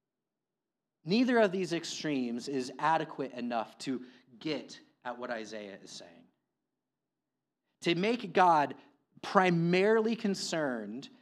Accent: American